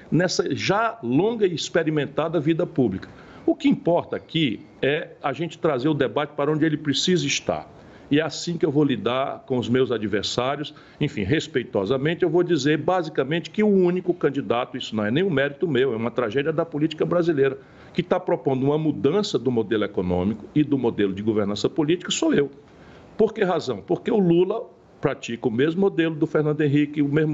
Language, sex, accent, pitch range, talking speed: Portuguese, male, Brazilian, 140-180 Hz, 190 wpm